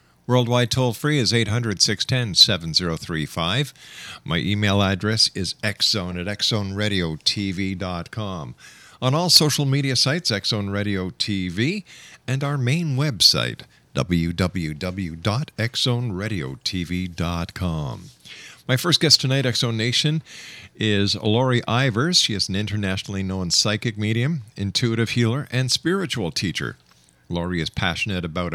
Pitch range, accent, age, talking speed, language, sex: 95-130 Hz, American, 50-69, 100 wpm, English, male